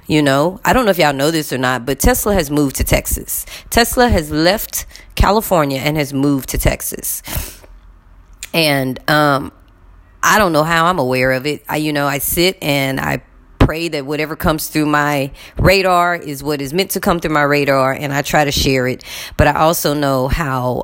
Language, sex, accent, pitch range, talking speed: English, female, American, 140-180 Hz, 200 wpm